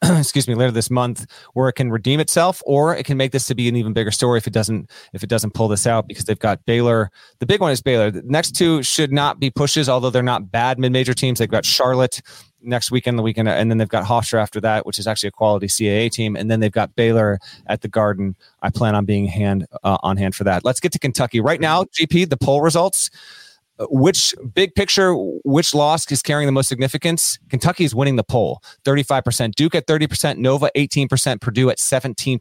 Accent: American